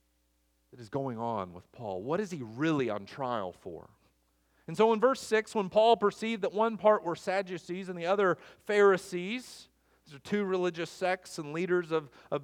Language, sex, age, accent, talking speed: English, male, 40-59, American, 190 wpm